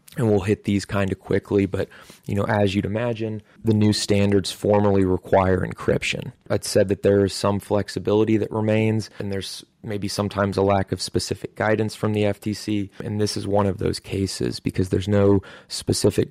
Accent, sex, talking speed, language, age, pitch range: American, male, 190 wpm, English, 20-39, 95-110 Hz